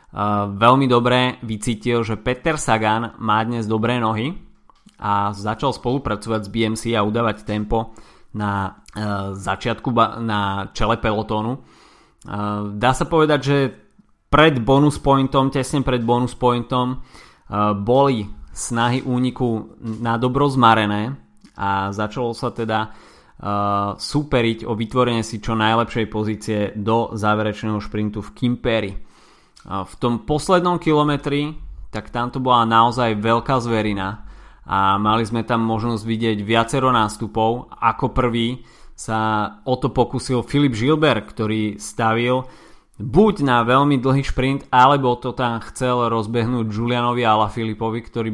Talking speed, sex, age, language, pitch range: 120 wpm, male, 20-39, Slovak, 110-125 Hz